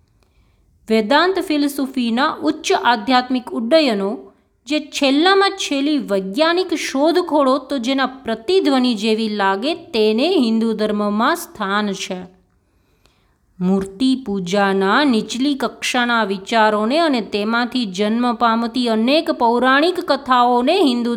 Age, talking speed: 20-39, 90 wpm